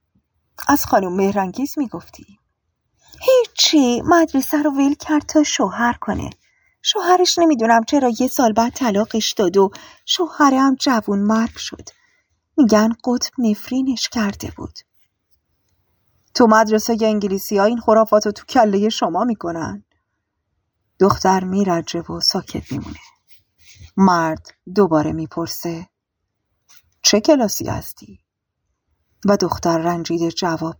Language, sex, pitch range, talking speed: Persian, female, 160-235 Hz, 110 wpm